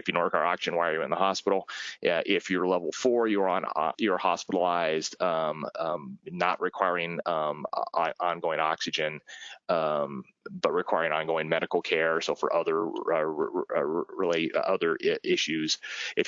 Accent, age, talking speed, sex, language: American, 30-49, 170 wpm, male, Italian